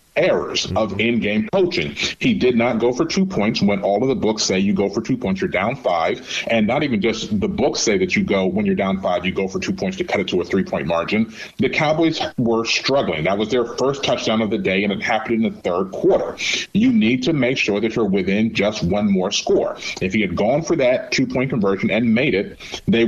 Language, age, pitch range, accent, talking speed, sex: English, 40-59, 100-140 Hz, American, 245 wpm, male